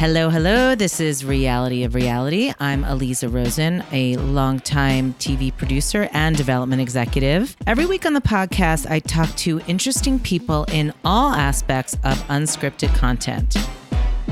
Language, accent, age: English, American, 40-59